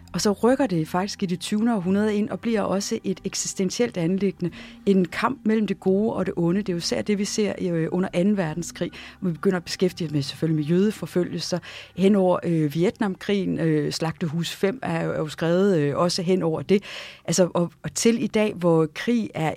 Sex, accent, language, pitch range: female, native, Danish, 160-200 Hz